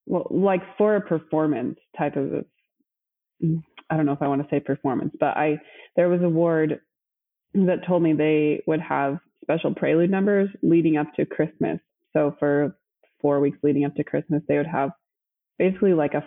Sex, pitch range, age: female, 145-170 Hz, 20-39